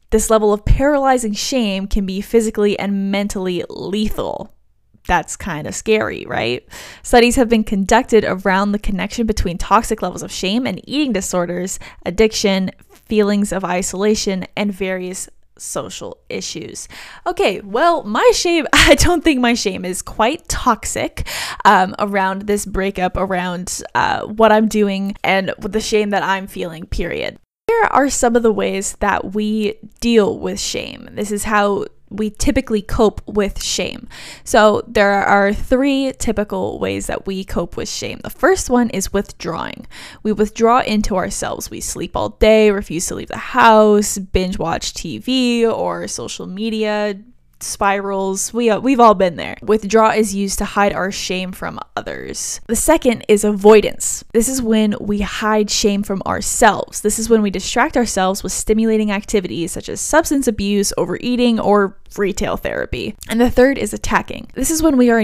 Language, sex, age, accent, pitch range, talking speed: English, female, 10-29, American, 195-230 Hz, 160 wpm